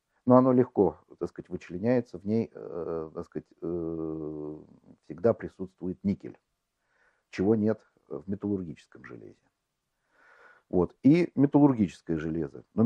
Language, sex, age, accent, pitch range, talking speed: Russian, male, 50-69, native, 80-105 Hz, 105 wpm